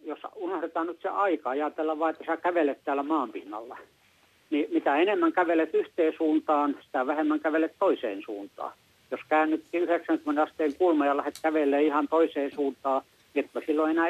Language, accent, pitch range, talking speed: Finnish, native, 135-165 Hz, 160 wpm